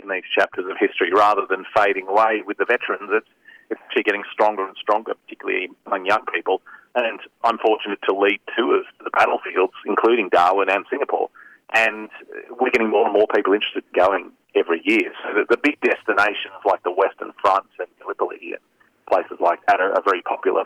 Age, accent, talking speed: 40-59, Australian, 185 wpm